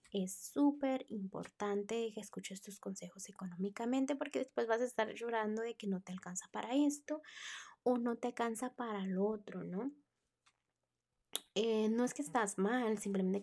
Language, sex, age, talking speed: Spanish, female, 20-39, 160 wpm